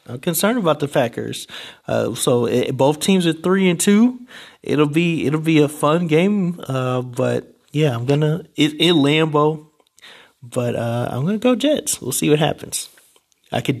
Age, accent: 30-49, American